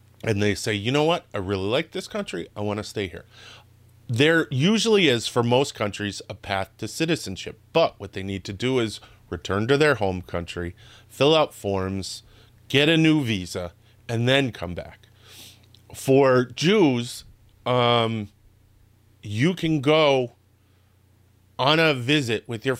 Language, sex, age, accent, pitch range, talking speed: English, male, 30-49, American, 100-140 Hz, 155 wpm